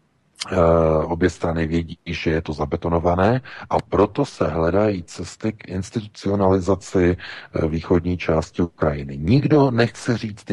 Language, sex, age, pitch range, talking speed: Czech, male, 40-59, 80-100 Hz, 115 wpm